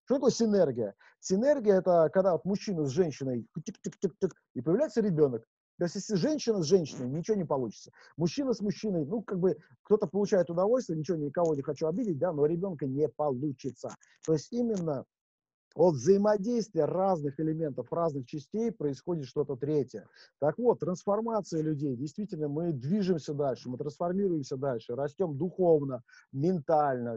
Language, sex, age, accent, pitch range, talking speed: Russian, male, 50-69, native, 150-205 Hz, 145 wpm